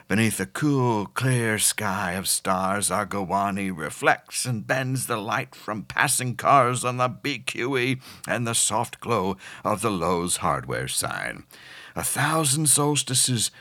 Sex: male